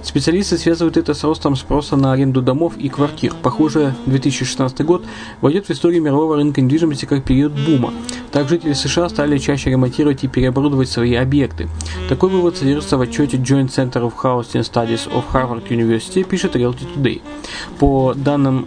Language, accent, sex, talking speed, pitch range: Russian, native, male, 165 wpm, 130-160 Hz